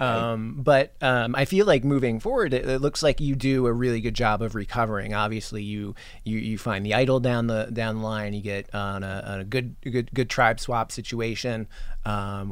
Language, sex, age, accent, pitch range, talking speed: English, male, 30-49, American, 105-125 Hz, 215 wpm